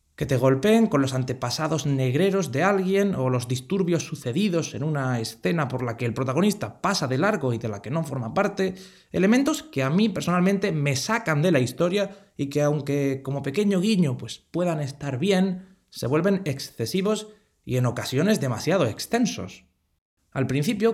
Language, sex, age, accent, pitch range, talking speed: Spanish, male, 20-39, Spanish, 125-190 Hz, 175 wpm